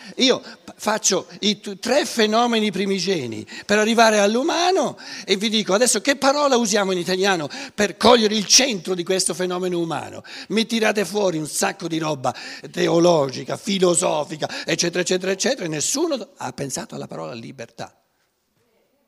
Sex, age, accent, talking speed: male, 60-79, native, 140 wpm